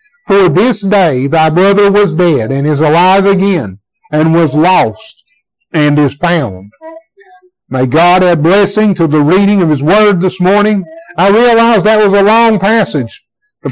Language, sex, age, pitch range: English, male, 60-79, 175-225 Hz